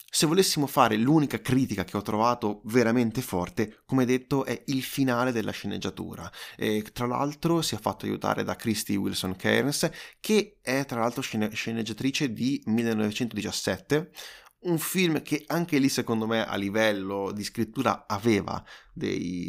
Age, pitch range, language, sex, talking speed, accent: 20-39, 110-150 Hz, Italian, male, 150 wpm, native